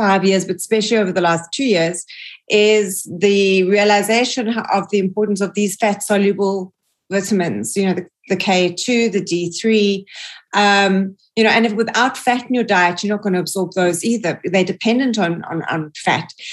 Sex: female